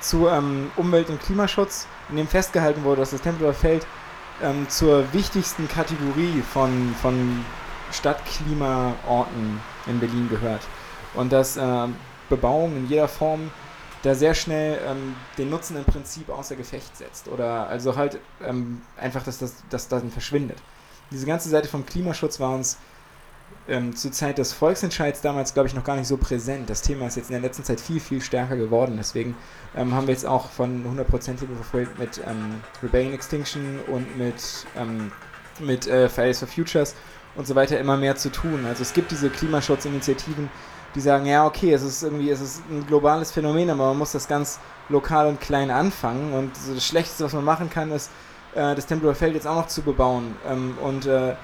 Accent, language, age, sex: German, German, 20-39, male